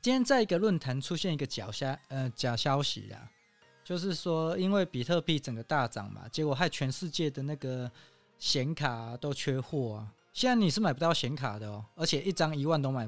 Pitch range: 125-170 Hz